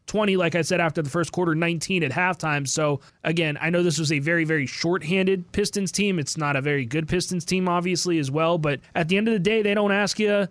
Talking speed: 250 wpm